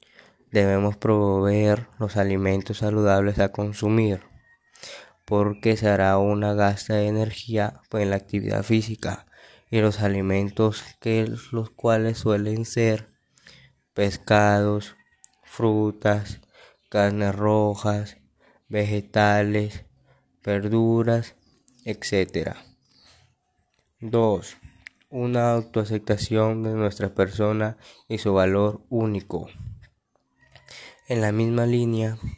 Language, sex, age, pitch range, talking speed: Spanish, male, 20-39, 100-110 Hz, 85 wpm